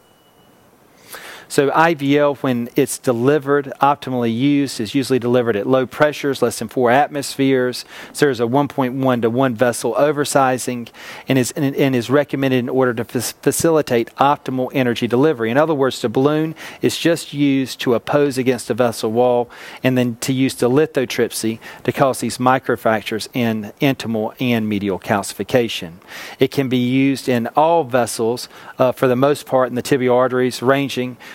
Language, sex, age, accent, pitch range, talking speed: English, male, 40-59, American, 120-140 Hz, 165 wpm